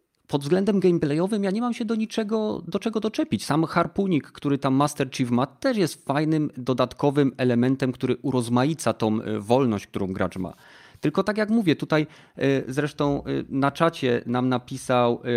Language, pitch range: Polish, 130-160 Hz